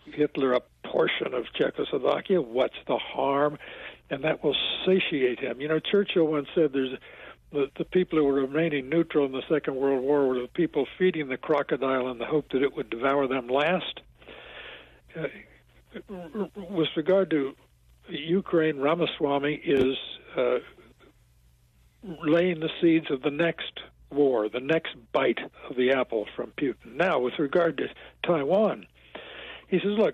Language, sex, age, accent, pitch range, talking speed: English, male, 60-79, American, 135-170 Hz, 155 wpm